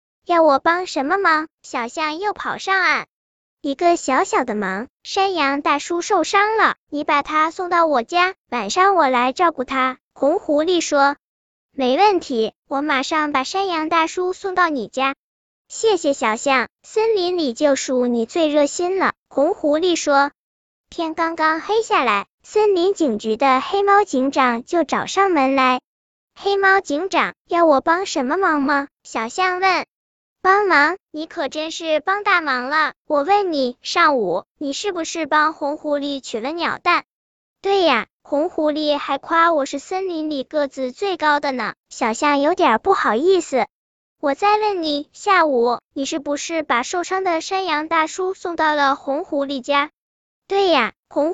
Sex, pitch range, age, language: male, 280-365 Hz, 10-29, Chinese